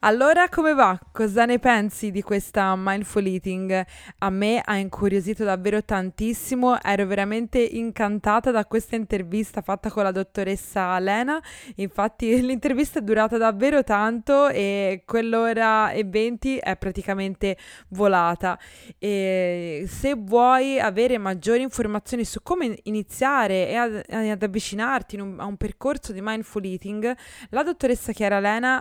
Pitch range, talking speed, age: 200-235 Hz, 130 wpm, 20-39